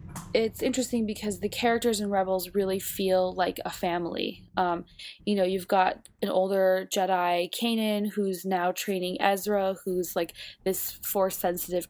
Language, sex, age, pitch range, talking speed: English, female, 20-39, 180-205 Hz, 145 wpm